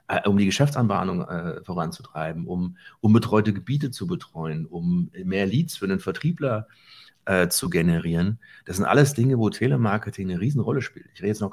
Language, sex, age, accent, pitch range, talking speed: German, male, 40-59, German, 90-120 Hz, 170 wpm